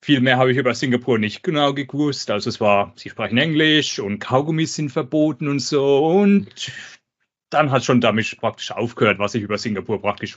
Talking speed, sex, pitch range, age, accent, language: 190 wpm, male, 110-140 Hz, 30-49, German, German